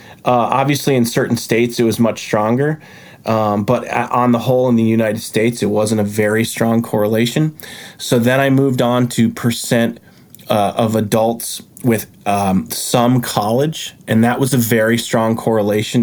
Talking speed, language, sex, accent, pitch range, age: 170 wpm, English, male, American, 110-120 Hz, 20-39